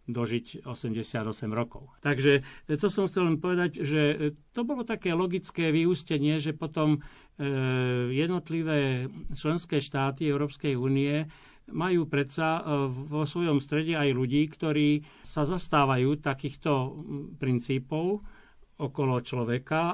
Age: 60-79